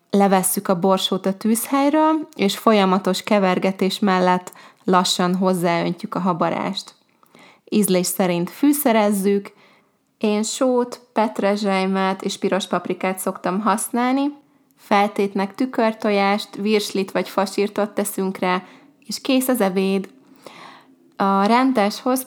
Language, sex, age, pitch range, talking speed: Hungarian, female, 20-39, 185-215 Hz, 100 wpm